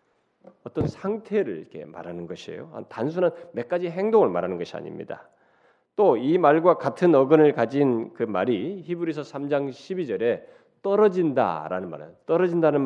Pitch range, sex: 135-200 Hz, male